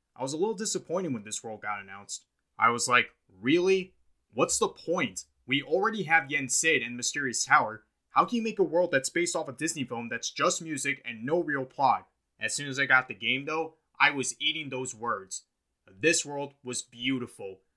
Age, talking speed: 20-39, 205 wpm